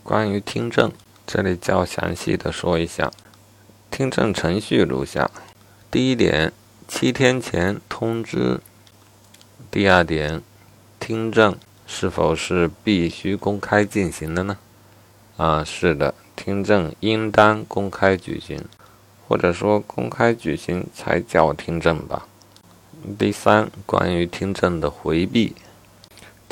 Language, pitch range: Chinese, 85-105 Hz